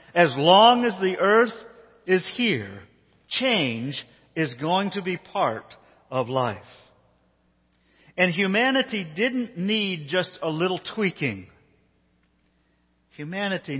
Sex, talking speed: male, 105 wpm